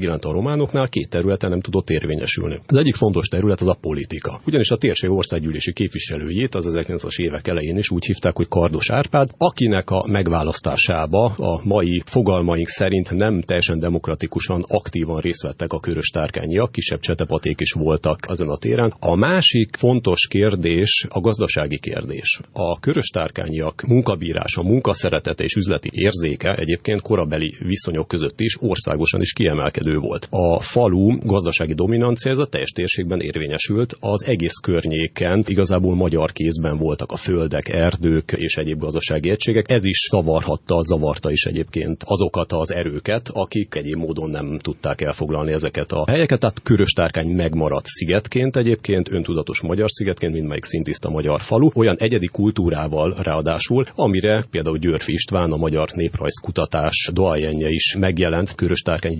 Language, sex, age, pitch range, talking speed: Hungarian, male, 40-59, 80-105 Hz, 145 wpm